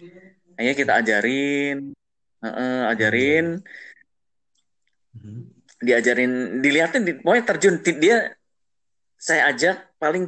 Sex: male